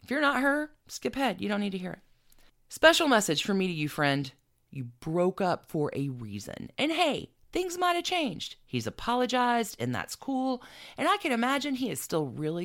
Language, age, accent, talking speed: English, 40-59, American, 210 wpm